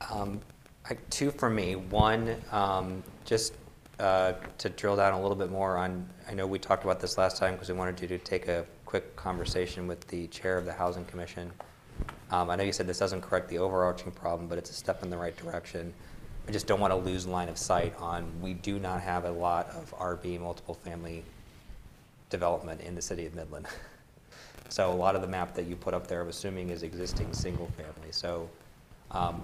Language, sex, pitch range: English, male, 85-95 Hz